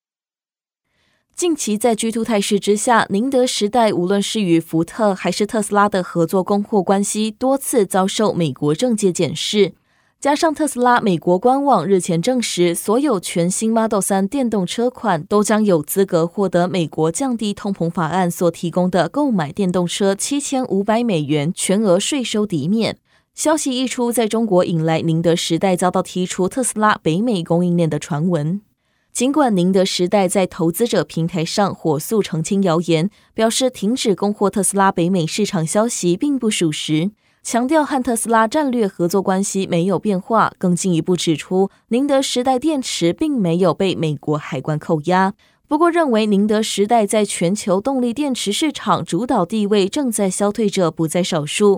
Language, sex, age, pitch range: Chinese, female, 20-39, 175-225 Hz